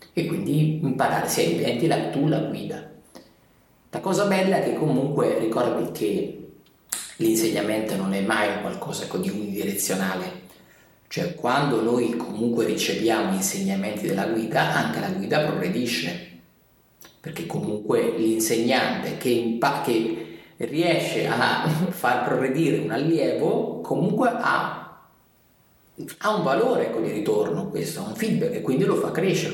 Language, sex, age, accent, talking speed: Italian, male, 30-49, native, 130 wpm